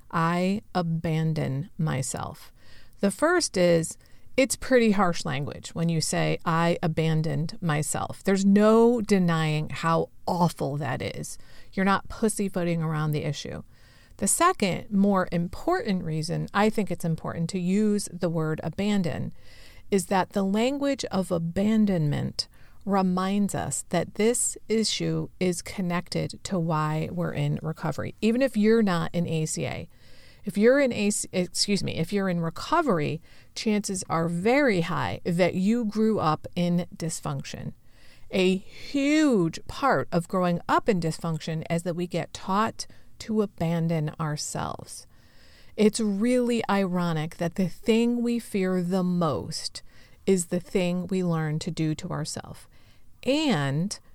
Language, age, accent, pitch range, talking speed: English, 40-59, American, 160-205 Hz, 135 wpm